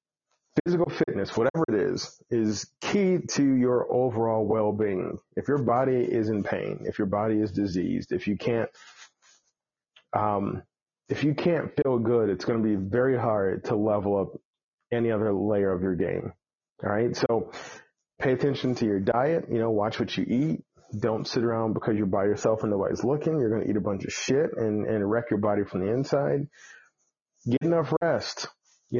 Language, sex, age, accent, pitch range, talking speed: English, male, 30-49, American, 105-135 Hz, 185 wpm